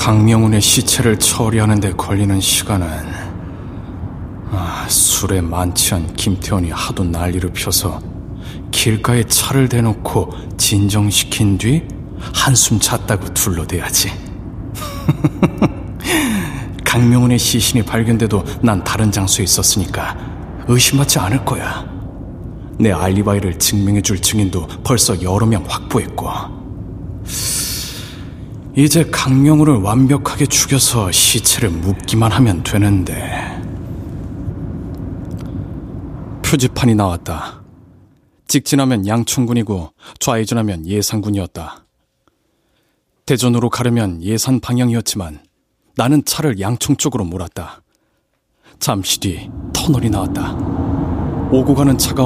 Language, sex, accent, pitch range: Korean, male, native, 95-120 Hz